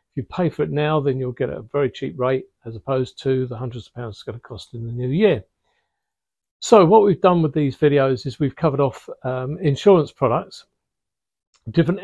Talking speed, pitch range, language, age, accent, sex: 210 wpm, 135-165 Hz, English, 50-69, British, male